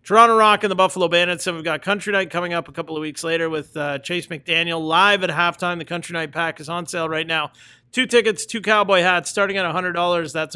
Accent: American